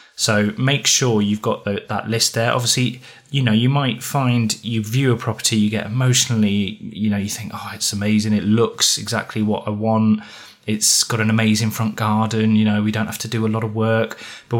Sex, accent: male, British